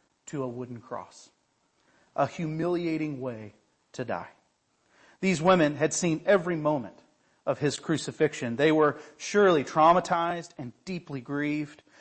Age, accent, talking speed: 40-59, American, 125 wpm